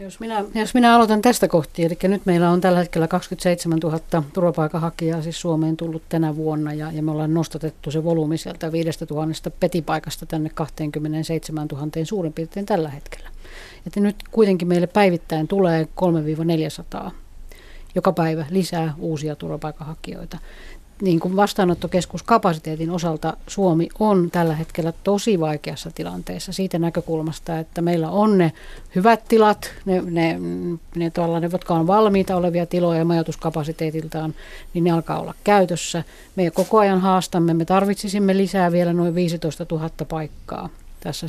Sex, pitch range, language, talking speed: female, 160-185 Hz, Finnish, 140 wpm